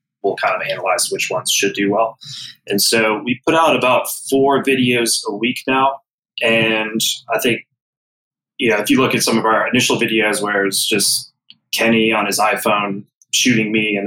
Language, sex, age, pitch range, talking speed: English, male, 20-39, 105-130 Hz, 180 wpm